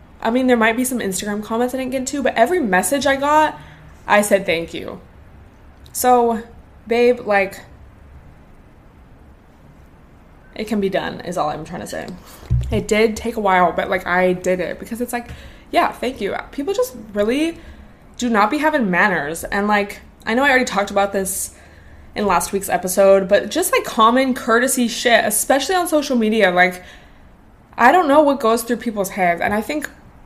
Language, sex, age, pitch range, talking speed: English, female, 20-39, 190-255 Hz, 185 wpm